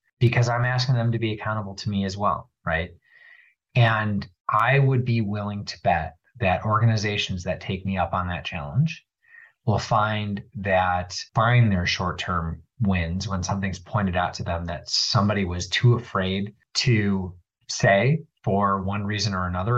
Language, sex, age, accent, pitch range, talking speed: English, male, 30-49, American, 95-120 Hz, 160 wpm